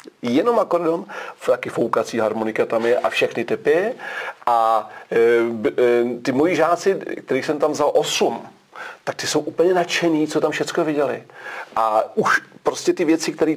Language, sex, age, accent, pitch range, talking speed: Czech, male, 40-59, native, 115-170 Hz, 160 wpm